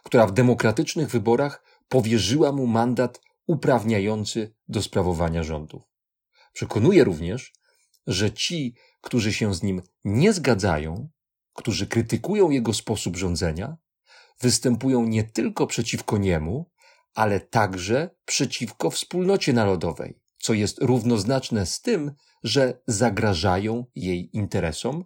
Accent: native